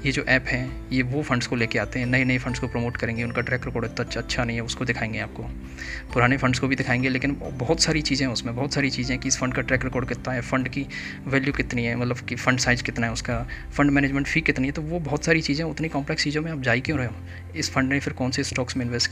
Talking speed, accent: 285 wpm, native